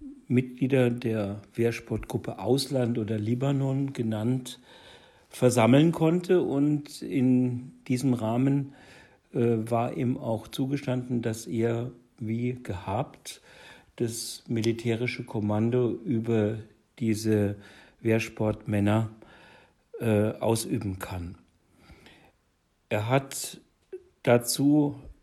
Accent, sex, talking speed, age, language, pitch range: German, male, 75 wpm, 50-69, German, 110-130 Hz